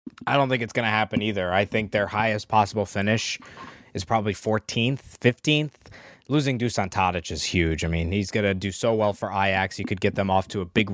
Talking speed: 225 wpm